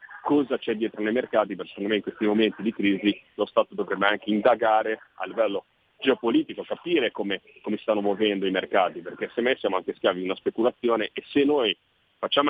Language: Italian